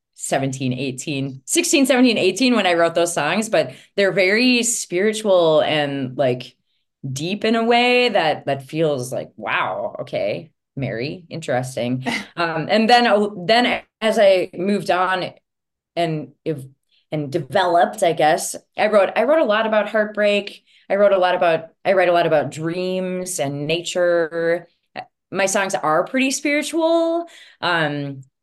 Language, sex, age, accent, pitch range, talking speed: English, female, 20-39, American, 150-235 Hz, 145 wpm